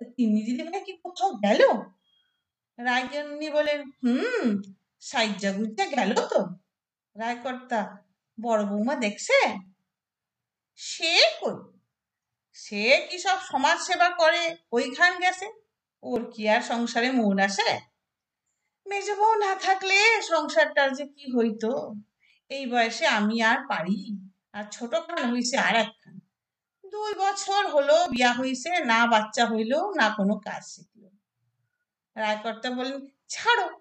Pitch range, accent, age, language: 205-300 Hz, native, 50-69, Bengali